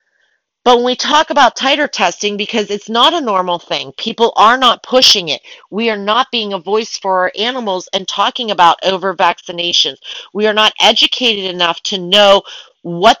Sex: female